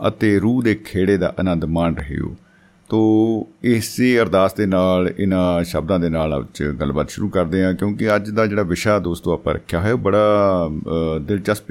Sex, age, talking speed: male, 50-69, 180 wpm